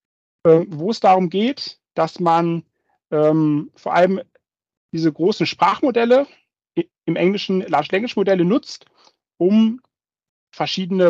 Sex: male